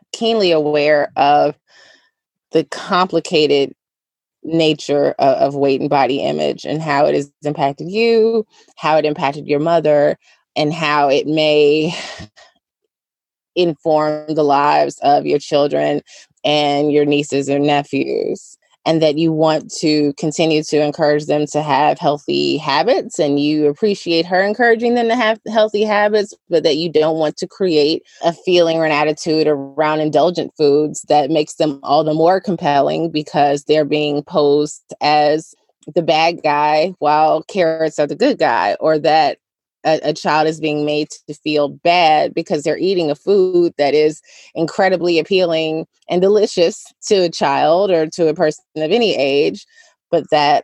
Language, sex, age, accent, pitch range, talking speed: English, female, 20-39, American, 150-180 Hz, 155 wpm